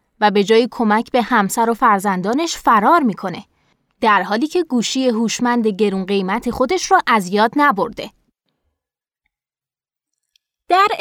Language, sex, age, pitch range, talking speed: Persian, female, 20-39, 215-305 Hz, 125 wpm